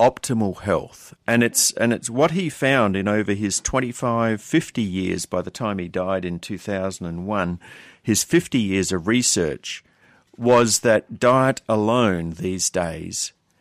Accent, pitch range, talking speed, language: Australian, 95-125 Hz, 170 wpm, English